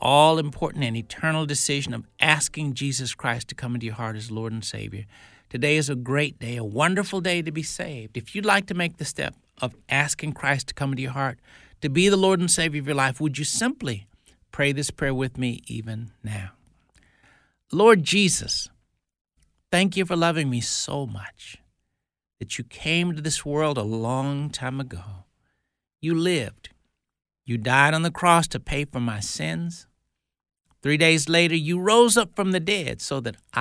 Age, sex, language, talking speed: 60-79, male, English, 185 wpm